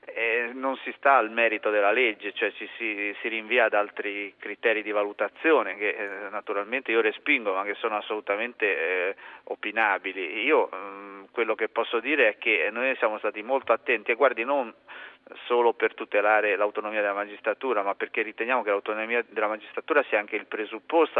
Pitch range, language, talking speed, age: 105-135 Hz, Italian, 175 wpm, 30-49